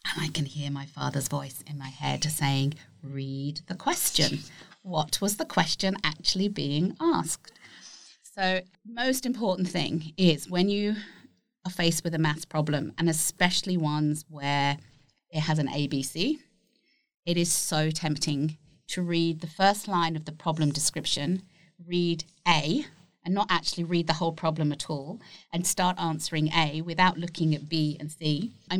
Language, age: English, 30-49